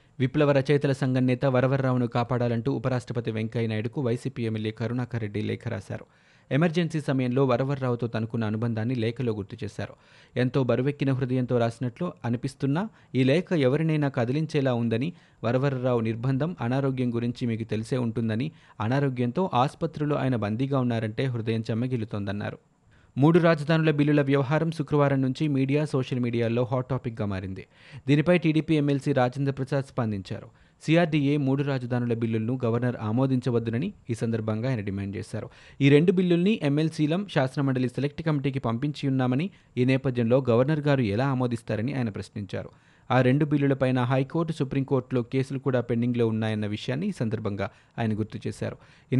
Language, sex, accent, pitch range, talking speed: Telugu, male, native, 115-145 Hz, 130 wpm